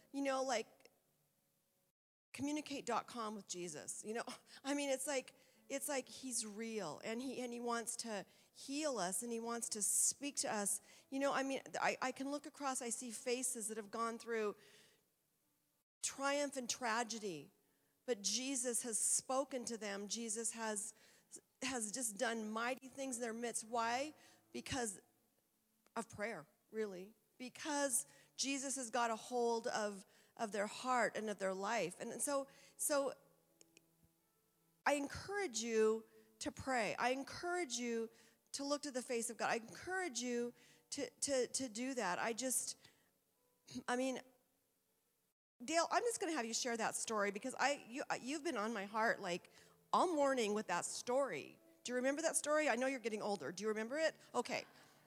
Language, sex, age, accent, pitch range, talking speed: English, female, 40-59, American, 220-270 Hz, 170 wpm